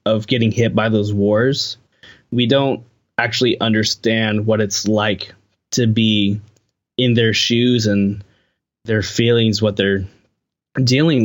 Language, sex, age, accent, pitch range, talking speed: English, male, 20-39, American, 105-125 Hz, 130 wpm